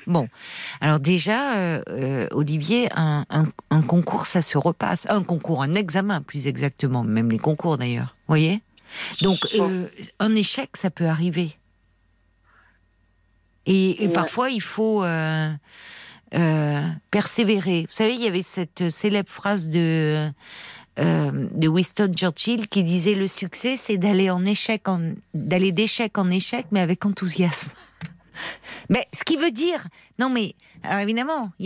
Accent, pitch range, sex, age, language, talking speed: French, 160-205 Hz, female, 50-69, French, 145 wpm